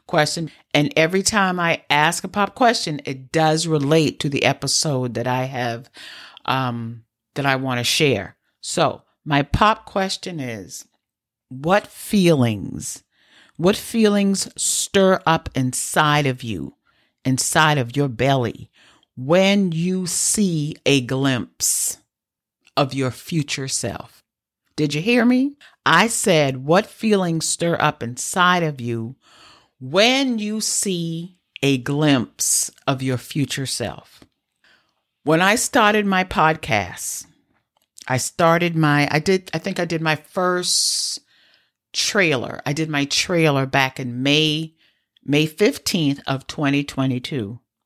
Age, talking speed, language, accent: 50-69, 125 wpm, English, American